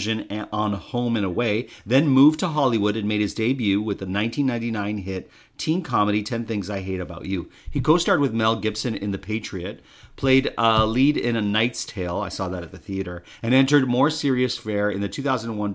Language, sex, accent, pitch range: English, male, American, 100-125 Hz